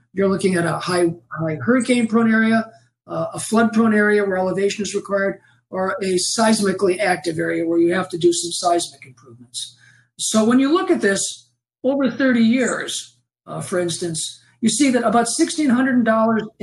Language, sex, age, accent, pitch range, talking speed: English, male, 50-69, American, 170-225 Hz, 165 wpm